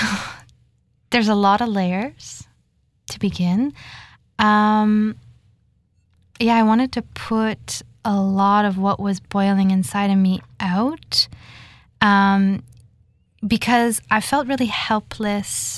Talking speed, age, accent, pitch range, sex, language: 110 wpm, 20-39, American, 180-205 Hz, female, English